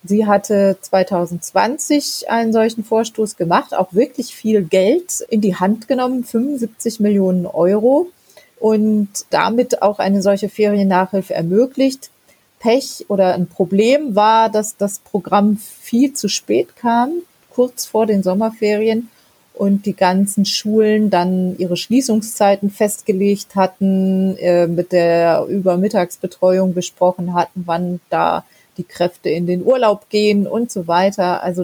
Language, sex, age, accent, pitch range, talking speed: German, female, 30-49, German, 185-220 Hz, 125 wpm